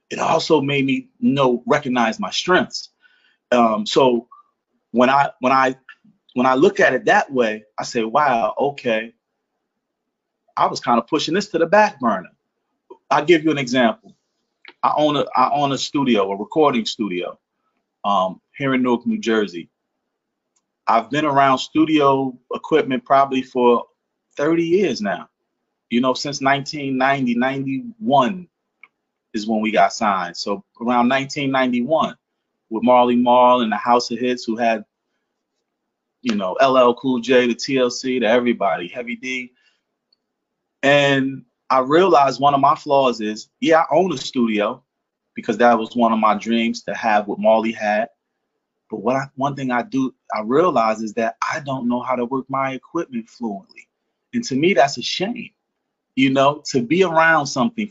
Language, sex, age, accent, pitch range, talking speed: English, male, 30-49, American, 120-145 Hz, 165 wpm